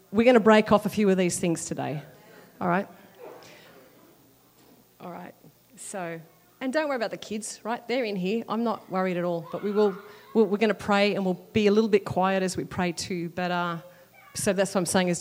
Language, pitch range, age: English, 180-225 Hz, 30-49